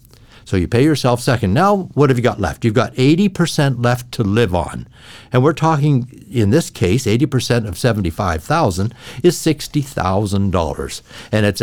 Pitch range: 105-140 Hz